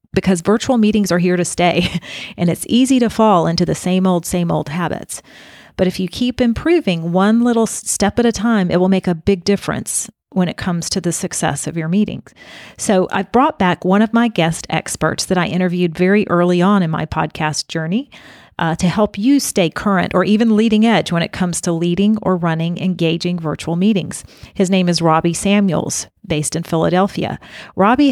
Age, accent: 40-59, American